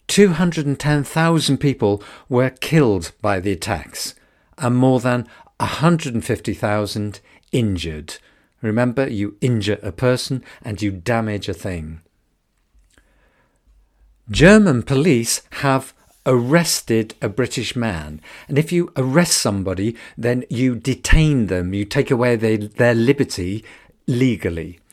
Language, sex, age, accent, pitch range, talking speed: English, male, 50-69, British, 105-140 Hz, 105 wpm